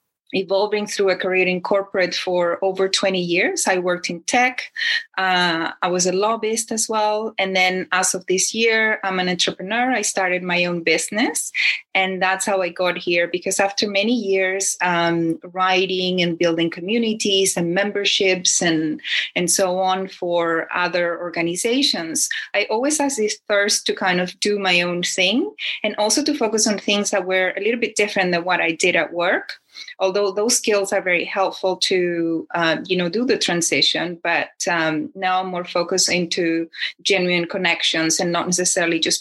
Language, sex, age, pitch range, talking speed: English, female, 20-39, 175-200 Hz, 175 wpm